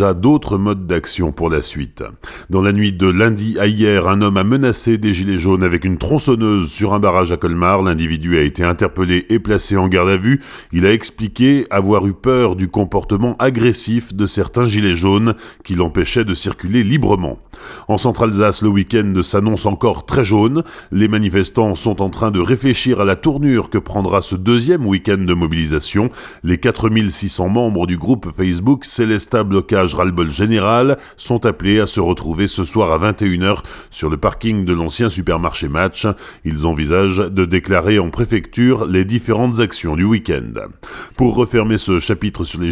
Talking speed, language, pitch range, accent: 175 wpm, French, 95-115 Hz, French